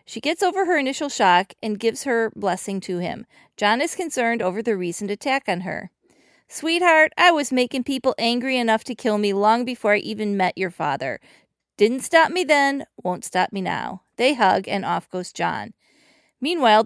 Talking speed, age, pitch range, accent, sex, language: 190 wpm, 40-59, 190-260 Hz, American, female, English